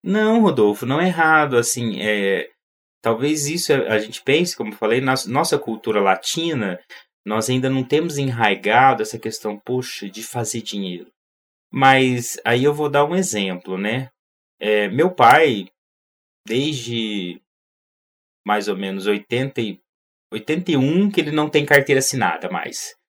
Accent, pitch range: Brazilian, 110-160 Hz